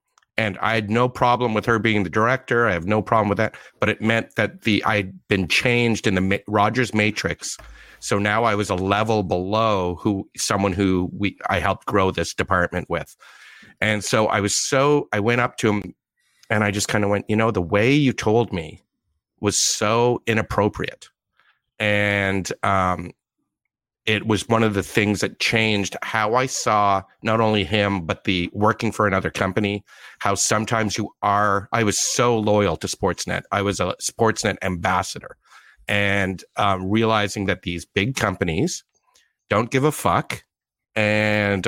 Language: English